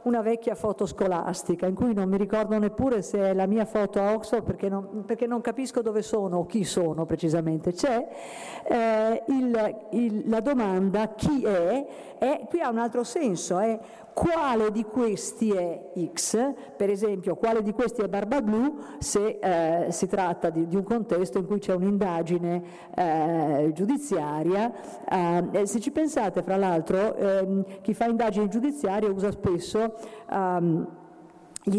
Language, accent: Italian, native